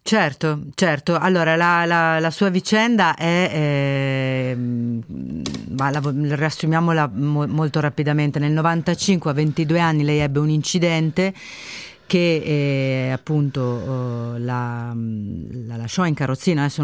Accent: native